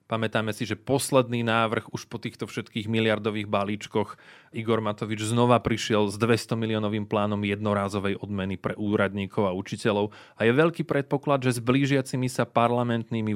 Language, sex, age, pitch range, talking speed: Slovak, male, 30-49, 105-125 Hz, 155 wpm